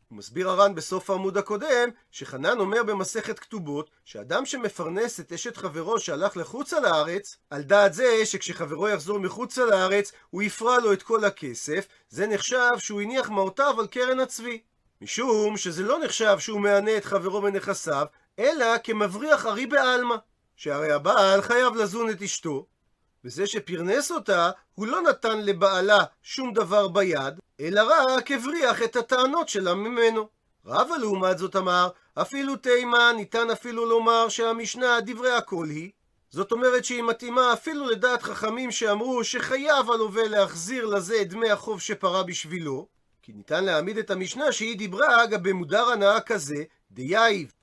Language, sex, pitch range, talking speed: Hebrew, male, 190-240 Hz, 145 wpm